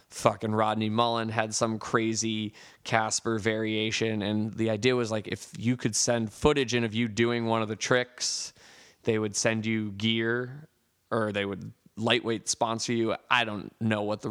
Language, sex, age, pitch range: English, male, 20-39, 110-125 Hz